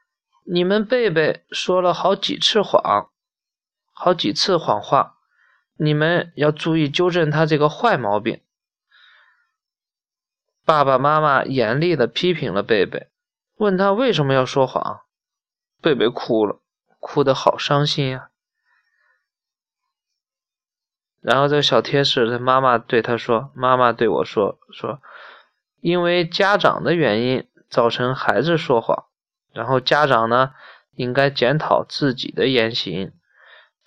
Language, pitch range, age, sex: Chinese, 130-175 Hz, 20-39, male